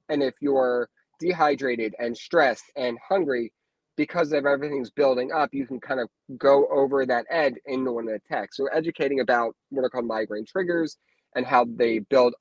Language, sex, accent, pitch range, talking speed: English, male, American, 125-155 Hz, 175 wpm